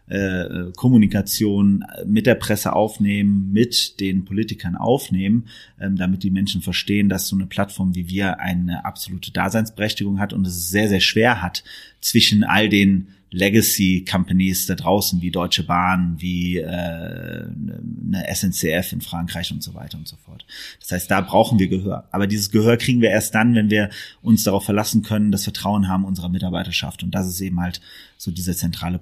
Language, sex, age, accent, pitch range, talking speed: German, male, 30-49, German, 90-105 Hz, 170 wpm